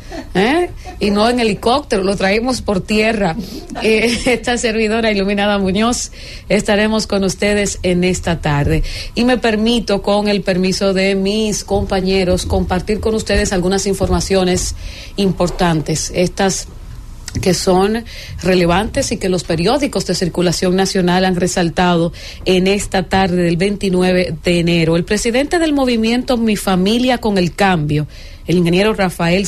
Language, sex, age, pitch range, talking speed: English, female, 40-59, 175-215 Hz, 135 wpm